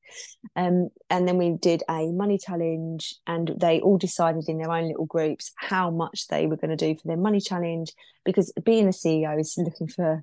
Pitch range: 165-215 Hz